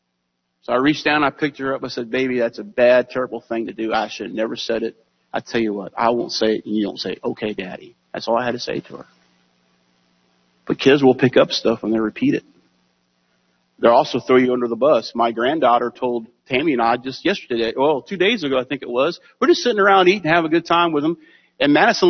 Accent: American